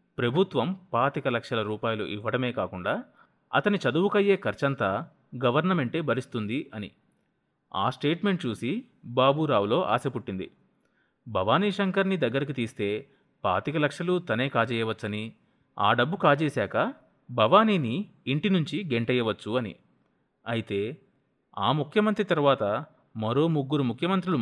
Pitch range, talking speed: 120-190 Hz, 100 wpm